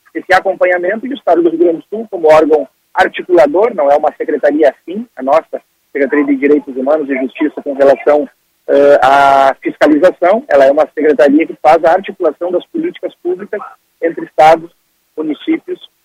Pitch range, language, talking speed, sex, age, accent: 145-225 Hz, Portuguese, 165 wpm, male, 40-59, Brazilian